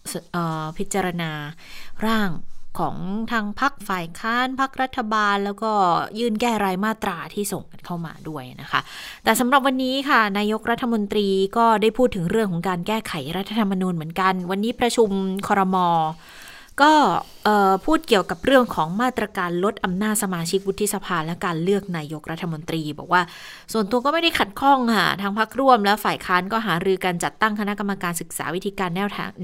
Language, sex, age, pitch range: Thai, female, 20-39, 175-225 Hz